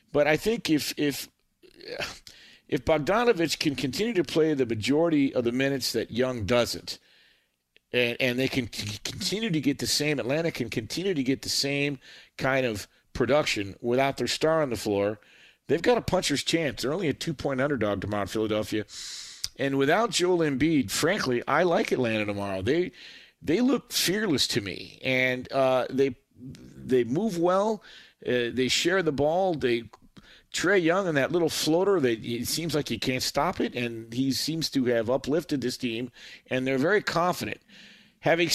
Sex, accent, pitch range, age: male, American, 115-150 Hz, 50-69